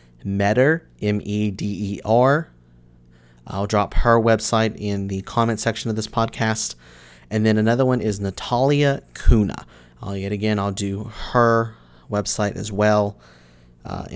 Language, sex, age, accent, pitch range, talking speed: English, male, 30-49, American, 75-110 Hz, 125 wpm